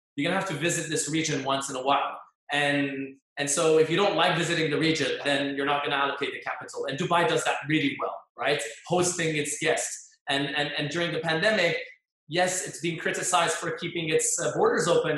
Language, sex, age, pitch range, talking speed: English, male, 20-39, 140-170 Hz, 220 wpm